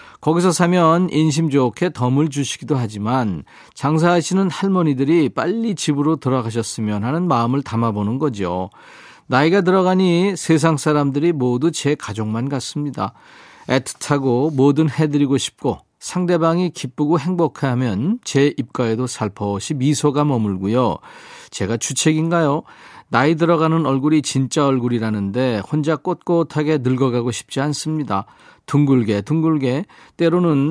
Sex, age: male, 40-59